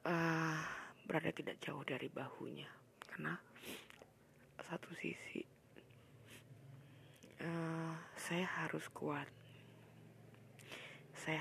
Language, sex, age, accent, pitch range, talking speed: Indonesian, female, 20-39, native, 130-180 Hz, 85 wpm